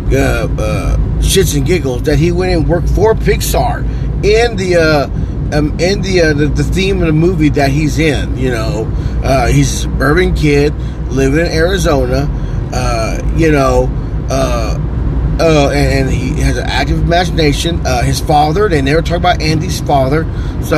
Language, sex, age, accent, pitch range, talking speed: English, male, 30-49, American, 135-160 Hz, 175 wpm